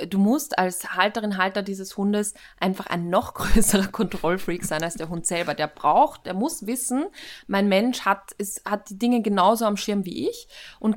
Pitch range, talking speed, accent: 180-220 Hz, 185 wpm, German